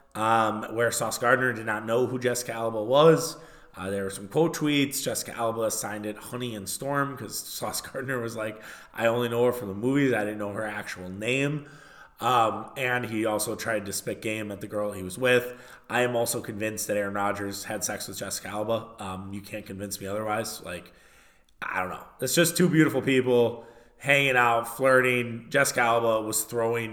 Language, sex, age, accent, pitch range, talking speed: English, male, 20-39, American, 110-130 Hz, 200 wpm